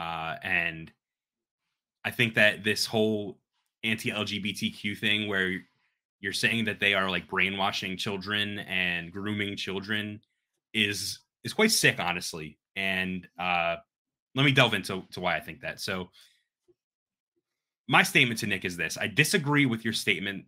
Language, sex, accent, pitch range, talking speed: English, male, American, 100-145 Hz, 145 wpm